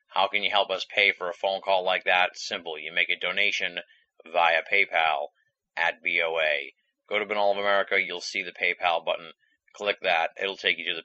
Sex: male